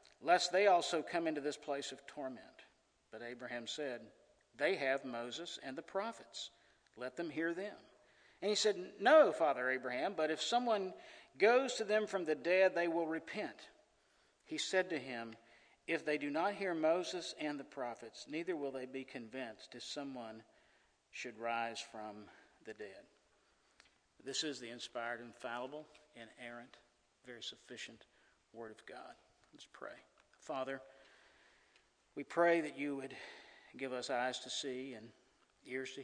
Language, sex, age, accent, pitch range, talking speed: English, male, 50-69, American, 120-165 Hz, 155 wpm